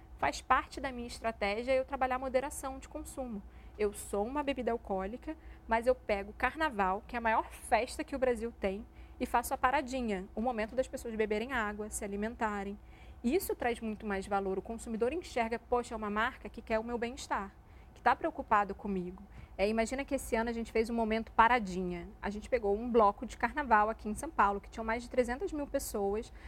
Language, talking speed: Portuguese, 205 wpm